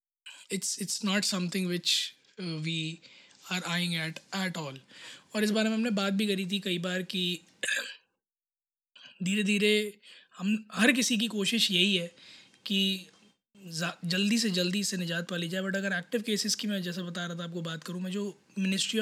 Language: Hindi